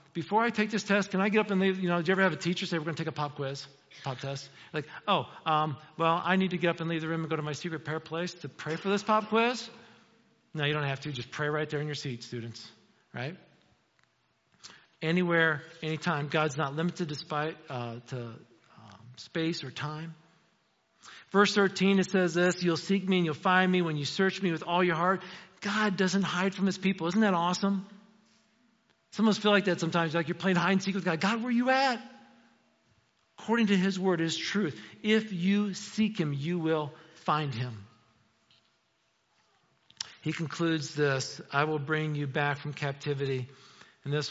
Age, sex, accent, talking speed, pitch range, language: 40-59, male, American, 210 wpm, 135-185 Hz, English